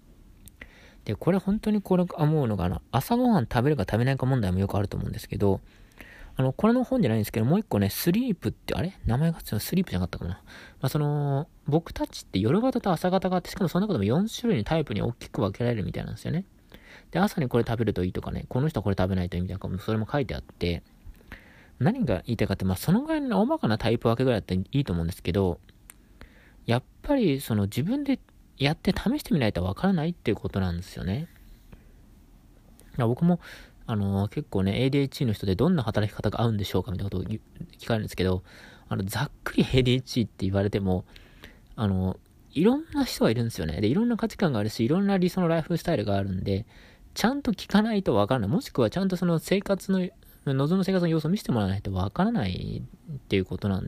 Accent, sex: native, male